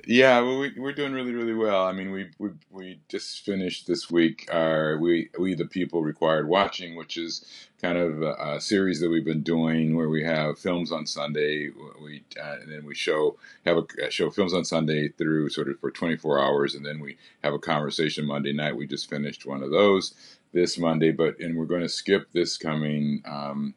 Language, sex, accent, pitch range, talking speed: English, male, American, 75-90 Hz, 215 wpm